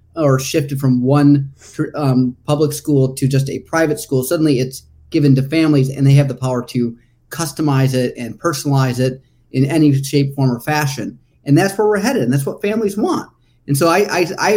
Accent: American